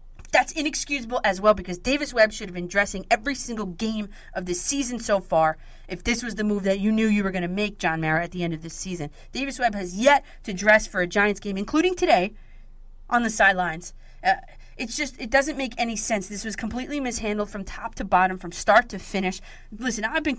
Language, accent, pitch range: English, American, 180-240 Hz